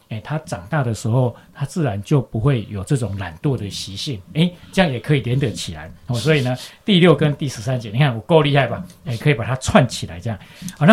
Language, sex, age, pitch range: Chinese, male, 40-59, 115-165 Hz